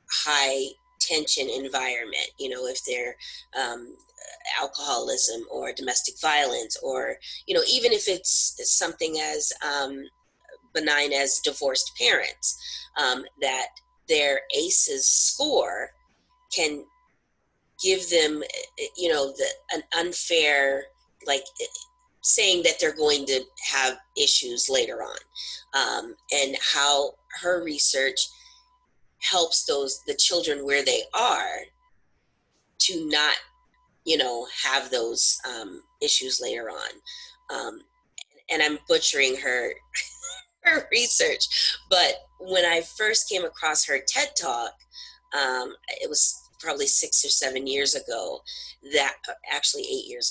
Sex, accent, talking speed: female, American, 115 wpm